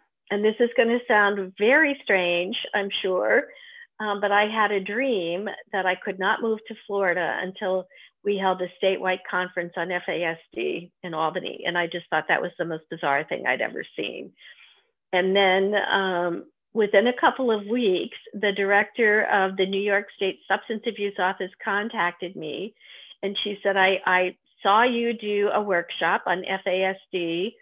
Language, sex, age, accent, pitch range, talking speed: English, female, 50-69, American, 180-215 Hz, 165 wpm